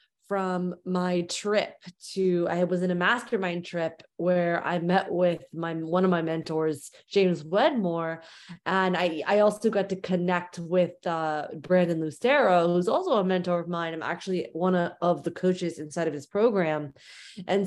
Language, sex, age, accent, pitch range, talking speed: English, female, 20-39, American, 165-200 Hz, 165 wpm